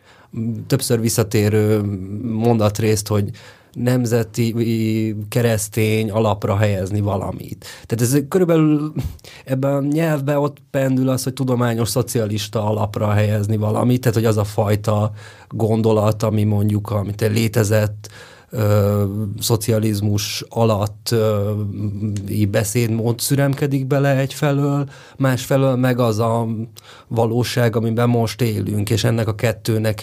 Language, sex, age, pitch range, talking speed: Hungarian, male, 30-49, 110-125 Hz, 110 wpm